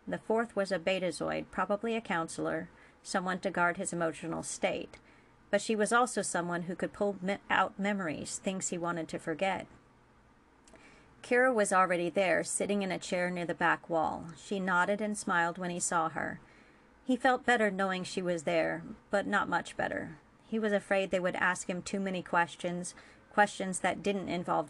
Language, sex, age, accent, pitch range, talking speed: English, female, 40-59, American, 175-205 Hz, 180 wpm